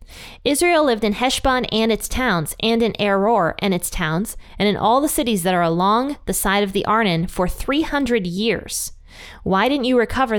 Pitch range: 175-230 Hz